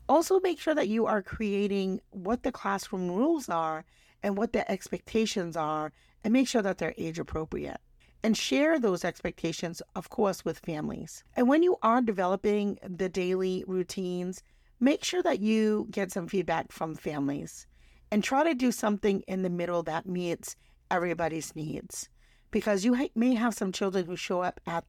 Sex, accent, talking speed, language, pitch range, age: female, American, 170 wpm, English, 170-220 Hz, 50-69